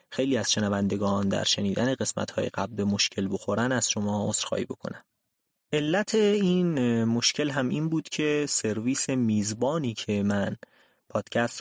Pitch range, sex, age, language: 105-140 Hz, male, 30-49, Persian